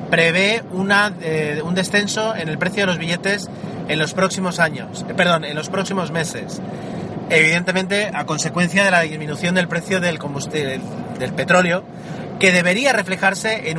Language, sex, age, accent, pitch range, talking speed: Spanish, male, 30-49, Spanish, 165-195 Hz, 160 wpm